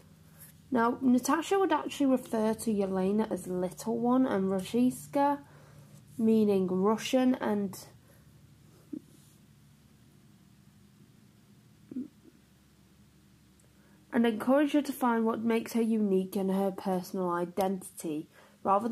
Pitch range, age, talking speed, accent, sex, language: 195-265 Hz, 30-49, 90 wpm, British, female, English